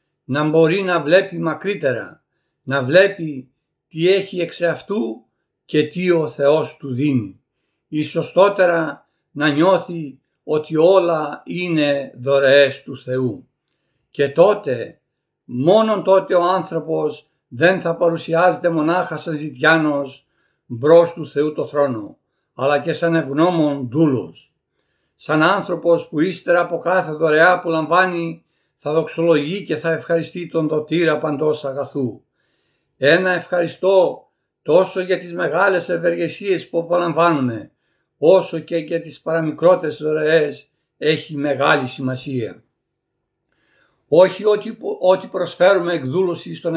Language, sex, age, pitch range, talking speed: Greek, male, 60-79, 145-175 Hz, 115 wpm